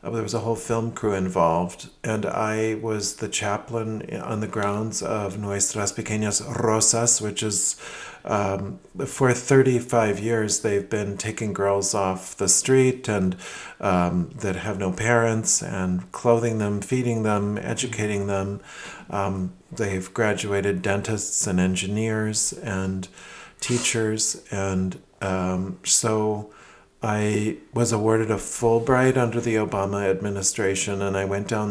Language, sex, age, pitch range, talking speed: English, male, 40-59, 95-115 Hz, 130 wpm